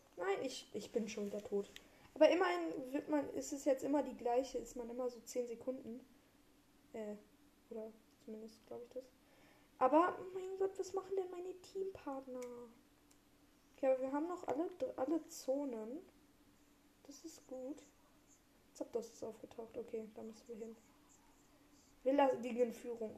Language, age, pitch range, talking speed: German, 20-39, 240-290 Hz, 155 wpm